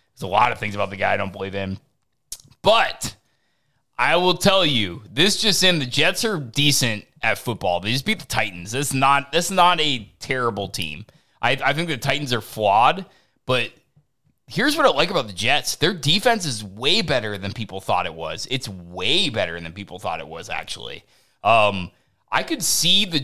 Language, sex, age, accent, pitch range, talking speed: English, male, 20-39, American, 115-160 Hz, 195 wpm